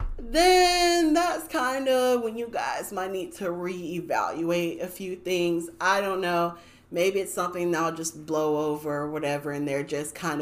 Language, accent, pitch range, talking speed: English, American, 165-200 Hz, 175 wpm